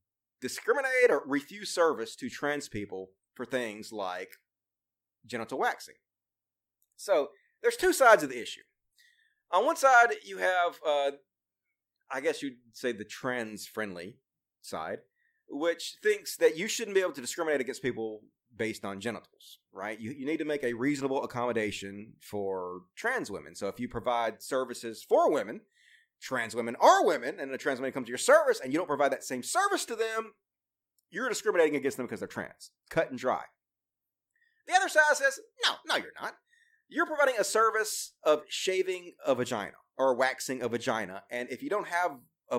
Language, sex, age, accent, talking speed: English, male, 30-49, American, 175 wpm